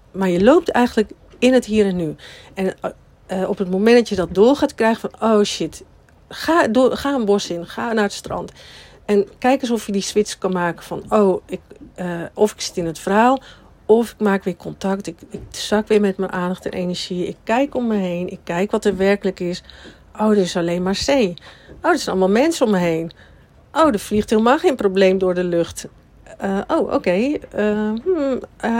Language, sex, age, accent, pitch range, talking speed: Dutch, female, 50-69, Dutch, 180-225 Hz, 215 wpm